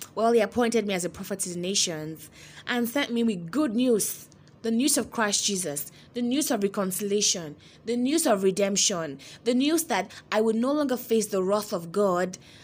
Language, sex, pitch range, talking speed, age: English, female, 175-235 Hz, 195 wpm, 20-39